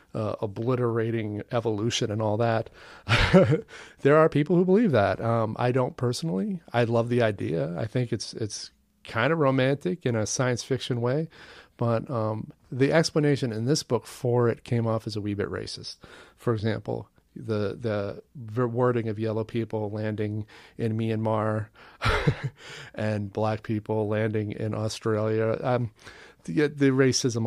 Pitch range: 110-130 Hz